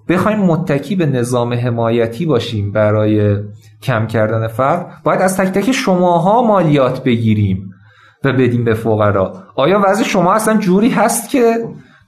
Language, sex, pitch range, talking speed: Persian, male, 120-180 Hz, 140 wpm